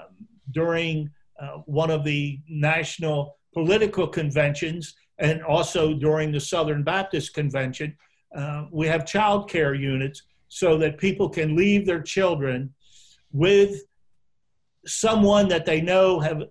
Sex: male